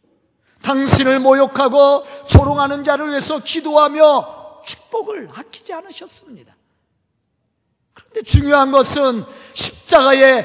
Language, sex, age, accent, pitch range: Korean, male, 40-59, native, 235-325 Hz